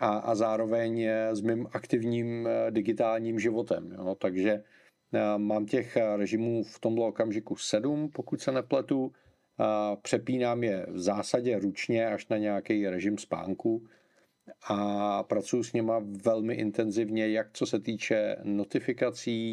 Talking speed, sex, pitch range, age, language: 120 wpm, male, 105-120 Hz, 40-59, Czech